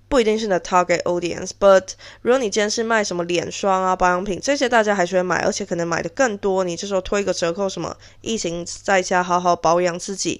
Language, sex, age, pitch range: Chinese, female, 20-39, 180-220 Hz